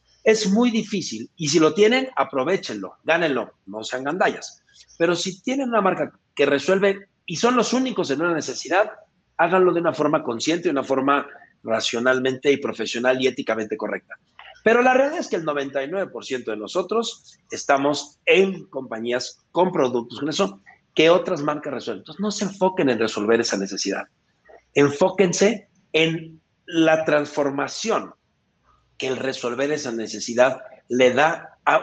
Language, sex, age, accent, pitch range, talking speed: English, male, 50-69, Mexican, 135-200 Hz, 145 wpm